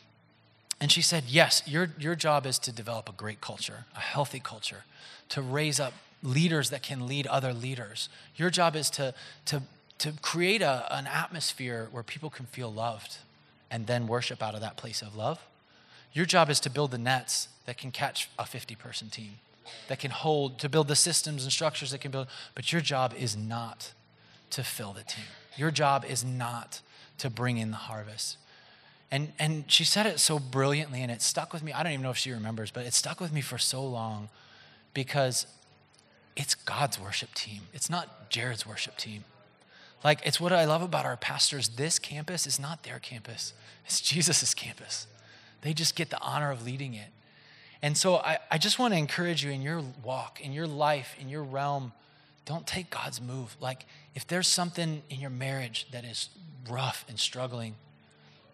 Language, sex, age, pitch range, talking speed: English, male, 30-49, 120-150 Hz, 190 wpm